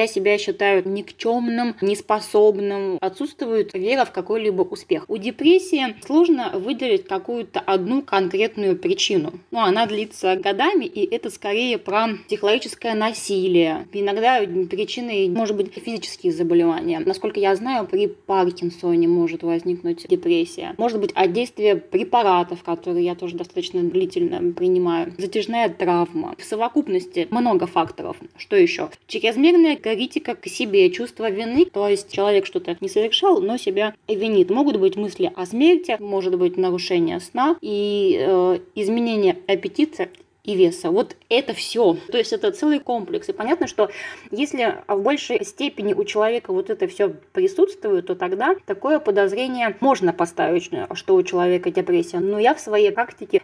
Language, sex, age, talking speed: Russian, female, 20-39, 145 wpm